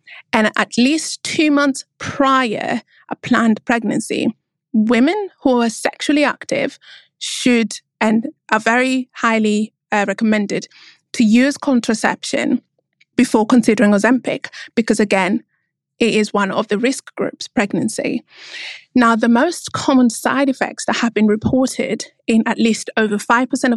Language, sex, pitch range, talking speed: English, female, 215-260 Hz, 130 wpm